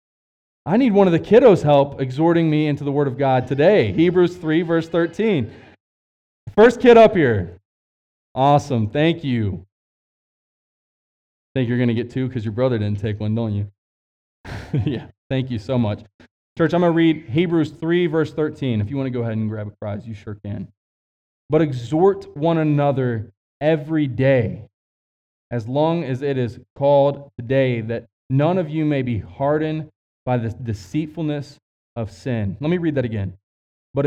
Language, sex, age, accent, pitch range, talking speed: English, male, 20-39, American, 110-170 Hz, 175 wpm